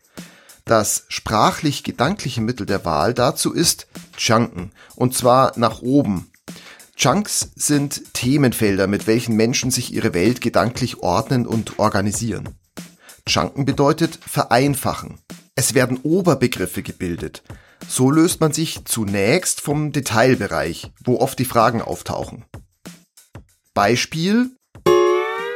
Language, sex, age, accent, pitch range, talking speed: German, male, 40-59, German, 105-140 Hz, 105 wpm